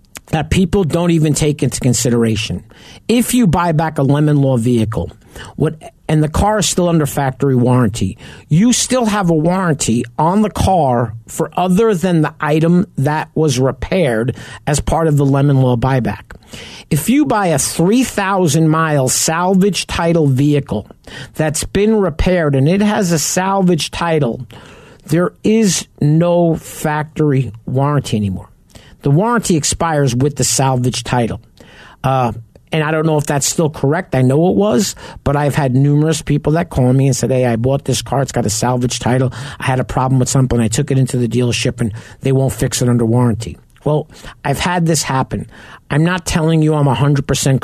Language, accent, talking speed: English, American, 175 wpm